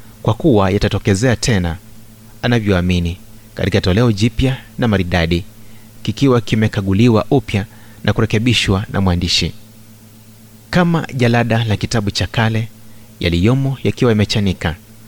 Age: 30-49